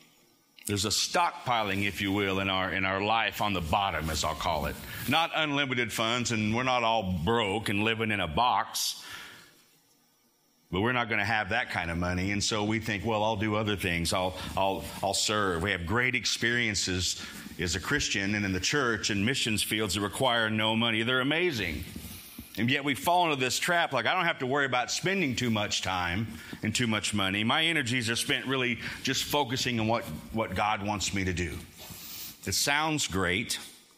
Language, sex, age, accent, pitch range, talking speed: English, male, 50-69, American, 95-120 Hz, 200 wpm